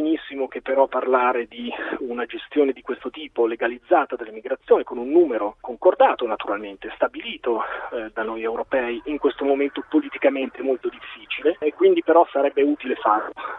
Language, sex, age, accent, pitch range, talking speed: Italian, male, 30-49, native, 115-155 Hz, 155 wpm